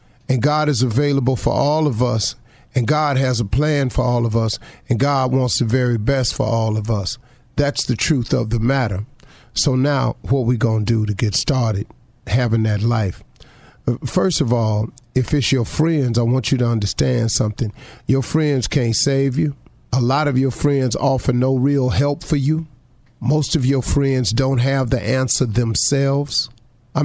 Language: English